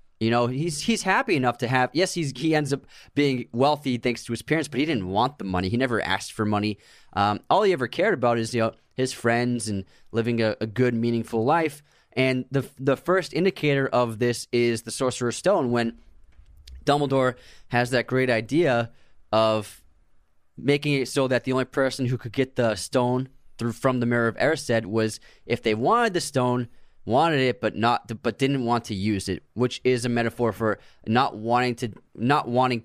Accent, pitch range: American, 115-135 Hz